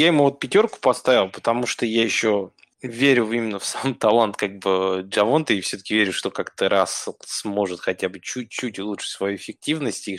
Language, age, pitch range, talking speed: Russian, 20-39, 95-120 Hz, 185 wpm